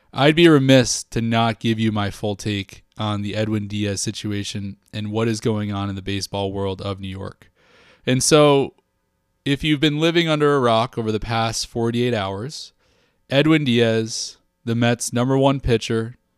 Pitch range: 105-135 Hz